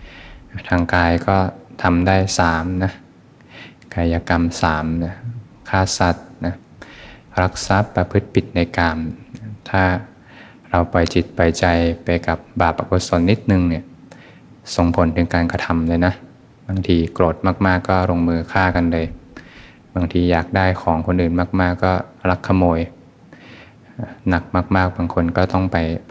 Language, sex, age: Thai, male, 20-39